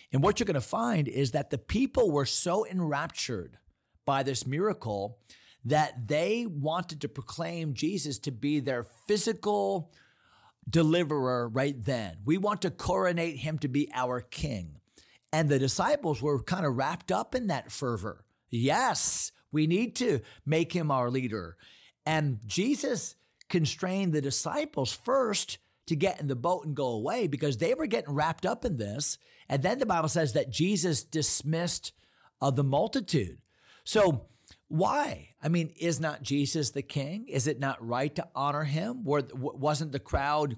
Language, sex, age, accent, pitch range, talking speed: English, male, 40-59, American, 130-170 Hz, 160 wpm